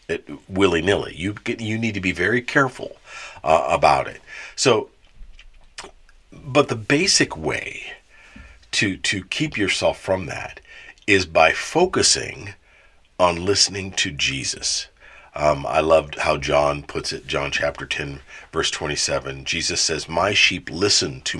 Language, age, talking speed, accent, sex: English, 50-69, 135 wpm, American, male